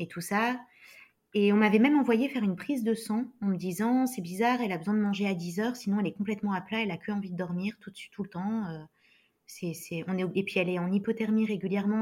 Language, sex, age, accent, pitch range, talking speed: French, female, 20-39, French, 170-215 Hz, 260 wpm